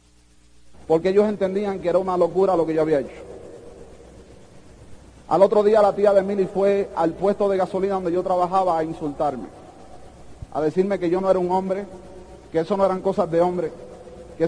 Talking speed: 185 wpm